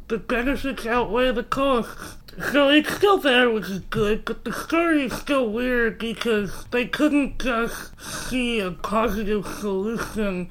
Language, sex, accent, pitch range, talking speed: English, male, American, 185-245 Hz, 150 wpm